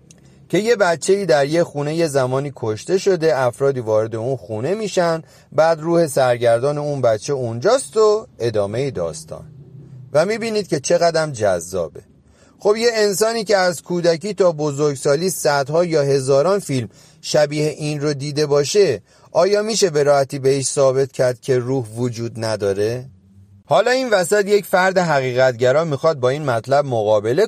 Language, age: Persian, 30-49